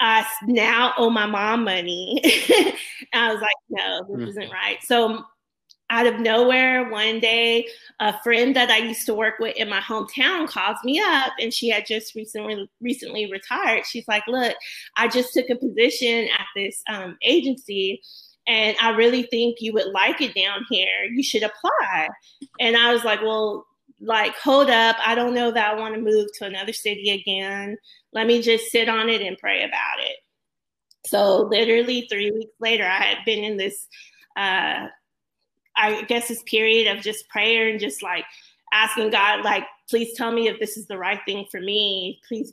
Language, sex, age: English, female, 20-39